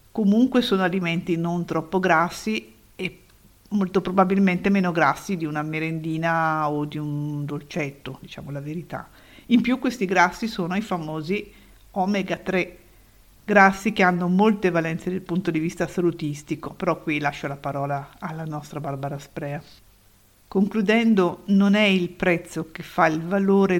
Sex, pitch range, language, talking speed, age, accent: female, 155-195 Hz, Italian, 145 wpm, 50-69, native